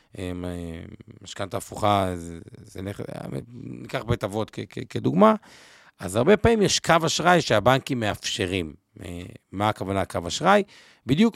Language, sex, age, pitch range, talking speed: Hebrew, male, 50-69, 100-125 Hz, 100 wpm